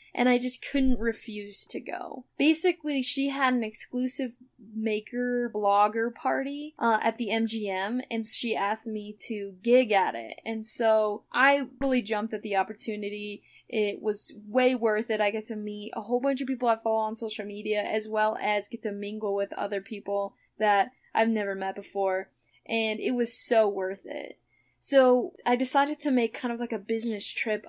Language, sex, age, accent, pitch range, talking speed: English, female, 10-29, American, 215-255 Hz, 185 wpm